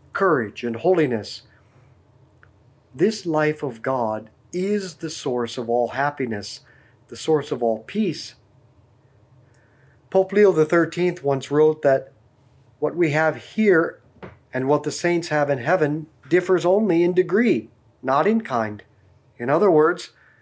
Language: English